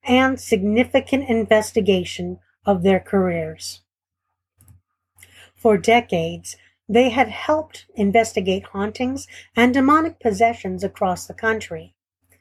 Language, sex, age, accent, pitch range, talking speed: English, female, 50-69, American, 165-220 Hz, 90 wpm